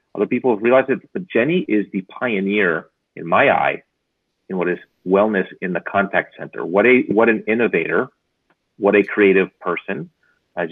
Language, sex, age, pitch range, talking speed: English, male, 30-49, 95-125 Hz, 175 wpm